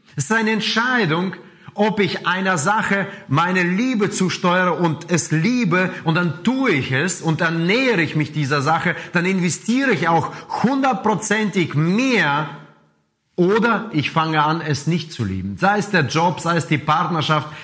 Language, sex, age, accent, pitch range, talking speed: German, male, 30-49, German, 155-205 Hz, 165 wpm